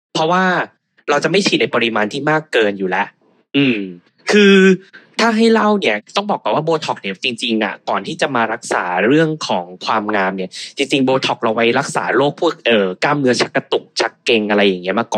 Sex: male